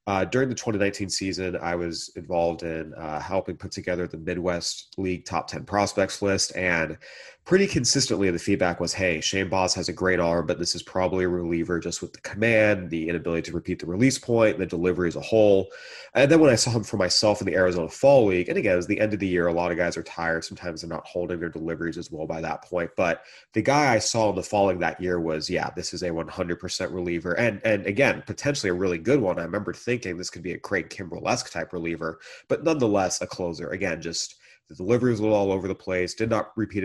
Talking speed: 245 wpm